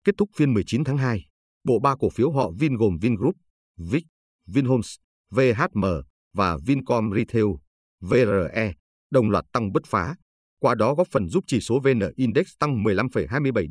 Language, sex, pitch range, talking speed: Vietnamese, male, 100-140 Hz, 160 wpm